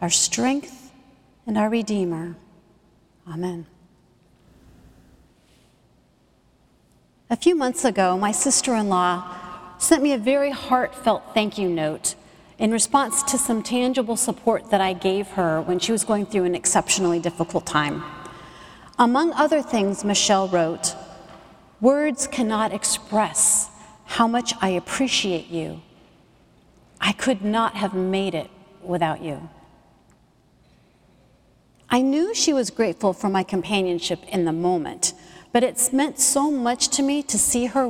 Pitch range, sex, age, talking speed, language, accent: 180-255 Hz, female, 40-59, 130 wpm, English, American